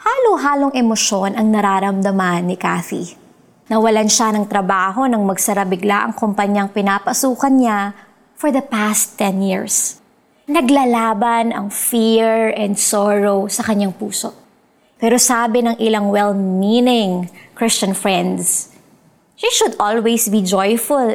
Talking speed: 120 wpm